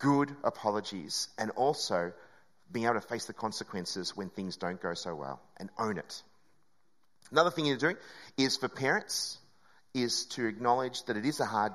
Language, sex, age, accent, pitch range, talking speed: English, male, 30-49, Australian, 130-195 Hz, 175 wpm